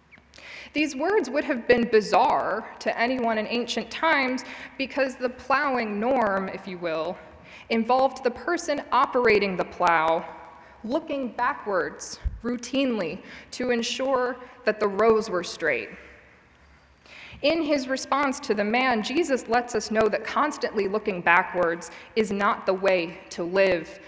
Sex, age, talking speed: female, 20-39, 135 wpm